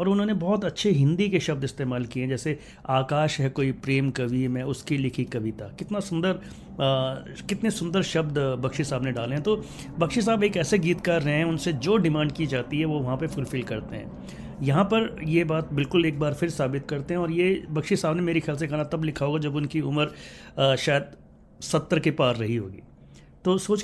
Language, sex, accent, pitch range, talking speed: Hindi, male, native, 130-175 Hz, 215 wpm